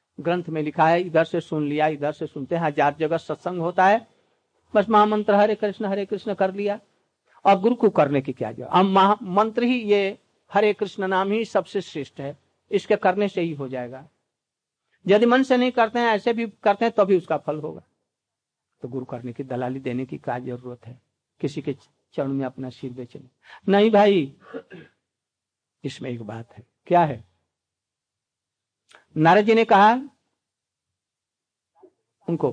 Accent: native